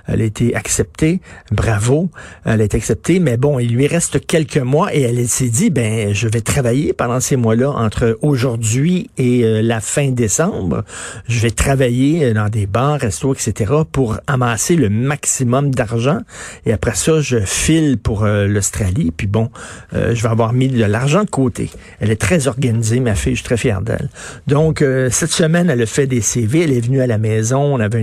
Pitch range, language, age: 115-155 Hz, French, 50-69